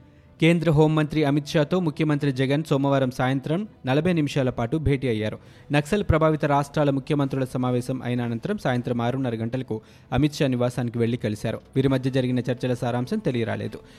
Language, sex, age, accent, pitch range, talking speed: Telugu, male, 20-39, native, 125-150 Hz, 145 wpm